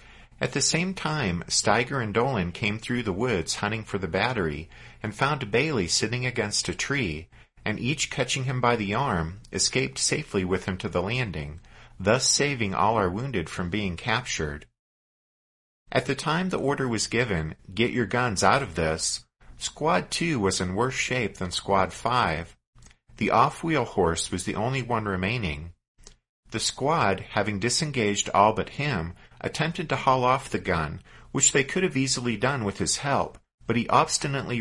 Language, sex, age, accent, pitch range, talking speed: English, male, 50-69, American, 95-130 Hz, 170 wpm